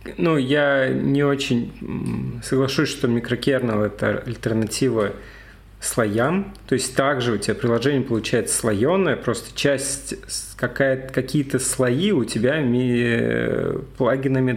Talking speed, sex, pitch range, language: 105 wpm, male, 120-145 Hz, Russian